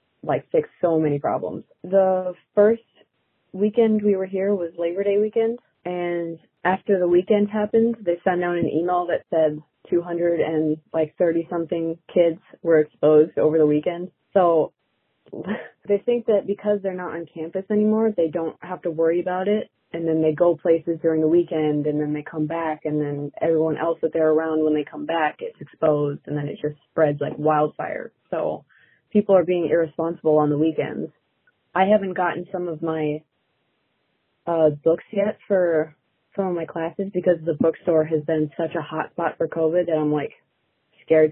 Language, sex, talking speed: English, female, 175 wpm